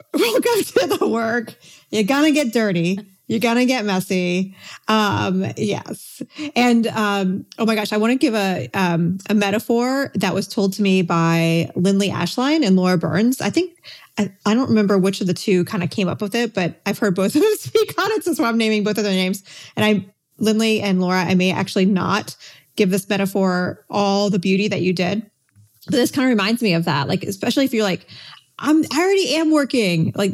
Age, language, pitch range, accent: 30-49, English, 185-235 Hz, American